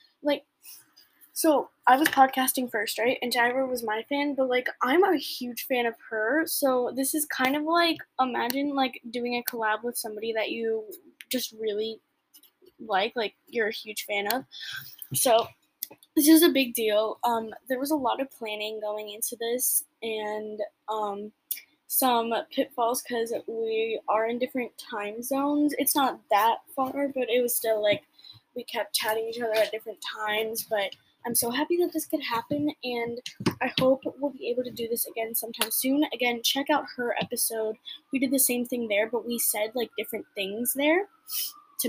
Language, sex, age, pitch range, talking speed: English, female, 10-29, 225-285 Hz, 180 wpm